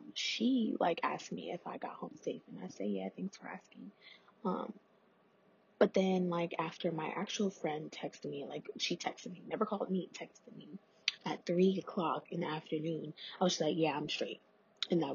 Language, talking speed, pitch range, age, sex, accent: English, 195 wpm, 170-190 Hz, 20-39, female, American